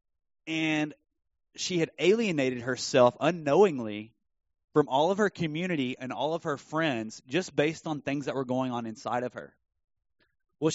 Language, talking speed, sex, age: English, 155 wpm, male, 30-49